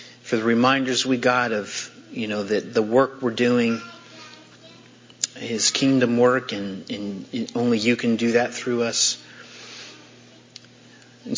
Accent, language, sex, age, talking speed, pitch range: American, English, male, 40-59, 140 wpm, 115-130 Hz